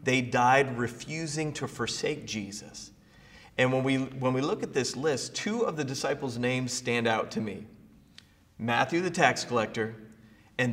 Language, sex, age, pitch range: English, male, 30-49, 120-160 Hz